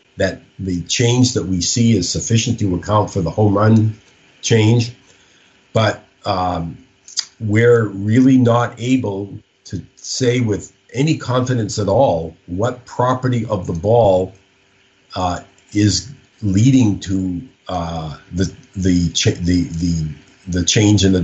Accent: American